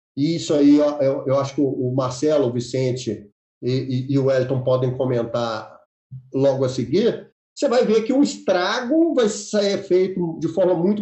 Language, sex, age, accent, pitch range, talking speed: Portuguese, male, 40-59, Brazilian, 140-230 Hz, 180 wpm